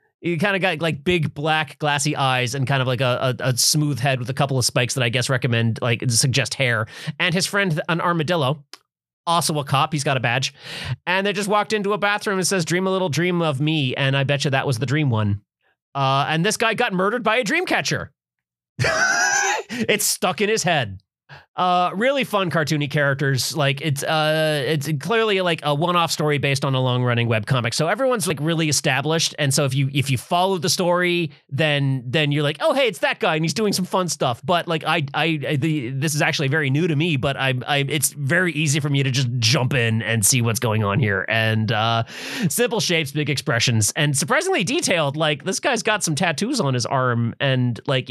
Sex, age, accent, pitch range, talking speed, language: male, 30-49, American, 135-180 Hz, 225 wpm, English